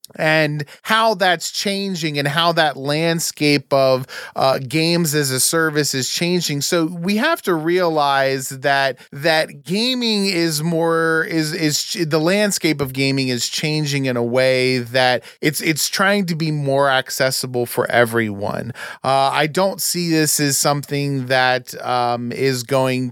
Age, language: 30-49, English